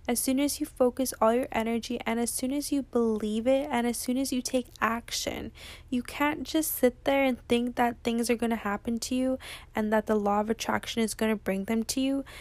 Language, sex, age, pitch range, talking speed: English, female, 10-29, 220-260 Hz, 240 wpm